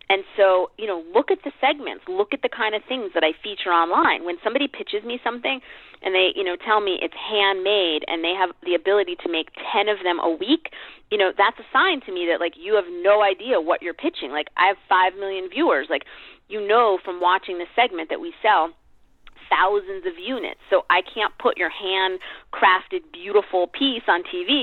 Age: 30-49